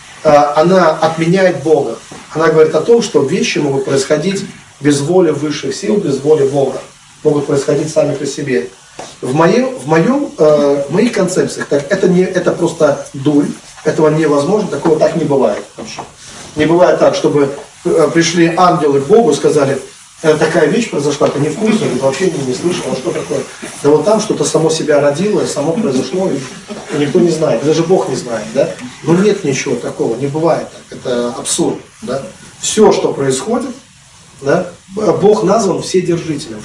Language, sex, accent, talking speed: Russian, male, native, 170 wpm